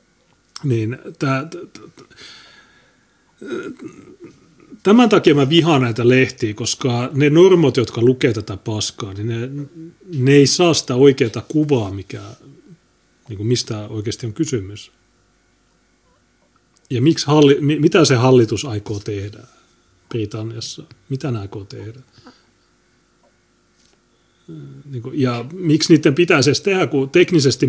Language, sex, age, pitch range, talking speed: Finnish, male, 30-49, 110-140 Hz, 105 wpm